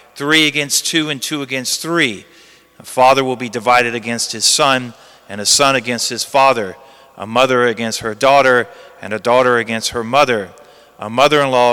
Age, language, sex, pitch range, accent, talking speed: 40-59, English, male, 125-190 Hz, American, 175 wpm